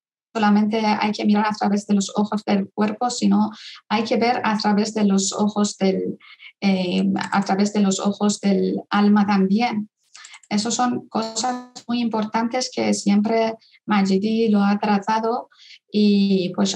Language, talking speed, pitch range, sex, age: Spanish, 155 wpm, 200-225 Hz, female, 20-39